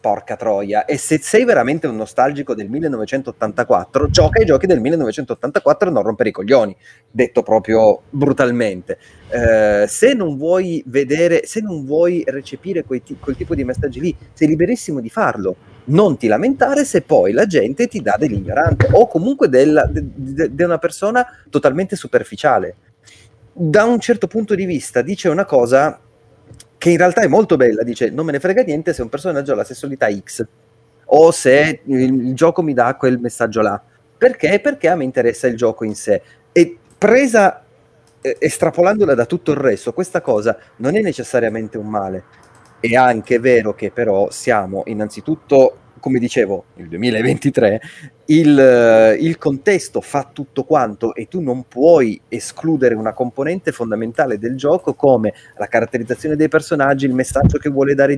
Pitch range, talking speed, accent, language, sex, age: 115-170 Hz, 160 wpm, native, Italian, male, 30-49